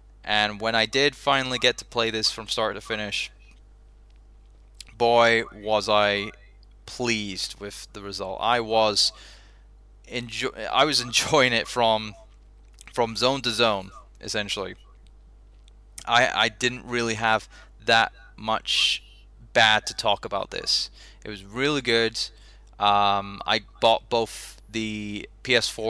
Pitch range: 100-115 Hz